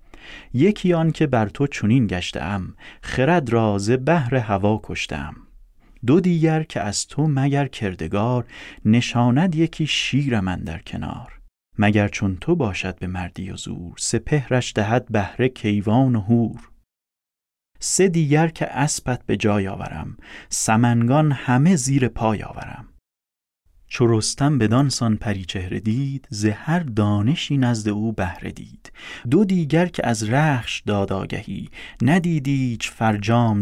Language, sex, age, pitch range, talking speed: Persian, male, 30-49, 105-135 Hz, 125 wpm